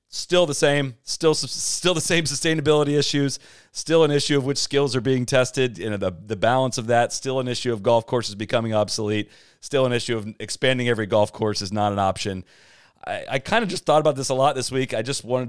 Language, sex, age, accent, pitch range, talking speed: English, male, 30-49, American, 105-135 Hz, 225 wpm